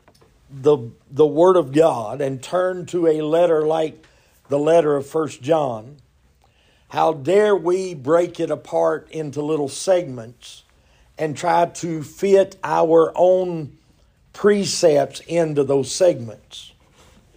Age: 50-69